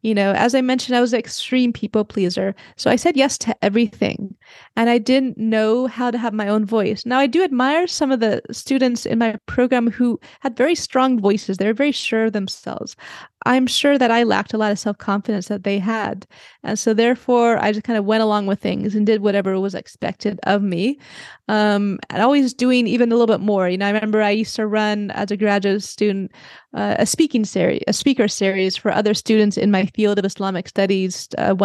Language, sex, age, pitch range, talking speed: English, female, 20-39, 205-245 Hz, 220 wpm